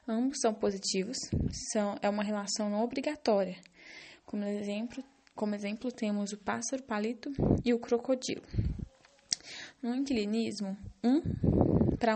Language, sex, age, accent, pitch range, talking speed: English, female, 10-29, Brazilian, 210-255 Hz, 110 wpm